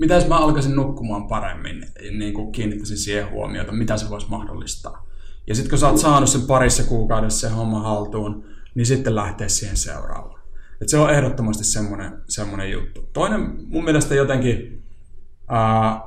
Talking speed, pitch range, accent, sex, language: 150 wpm, 100-120 Hz, native, male, Finnish